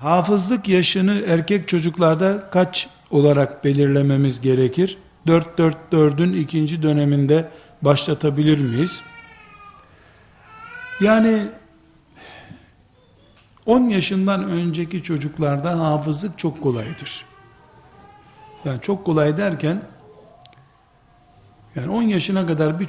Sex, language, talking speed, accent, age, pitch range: male, Turkish, 80 wpm, native, 60-79, 140-190 Hz